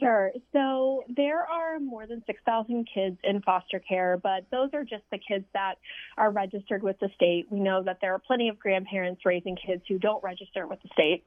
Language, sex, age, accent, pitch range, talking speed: English, female, 30-49, American, 185-215 Hz, 210 wpm